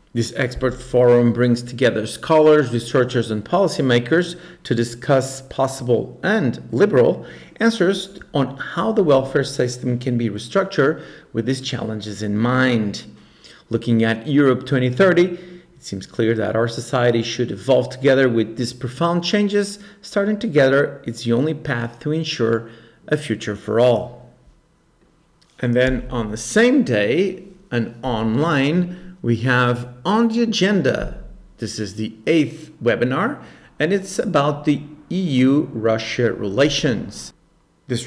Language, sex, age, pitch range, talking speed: English, male, 40-59, 120-165 Hz, 130 wpm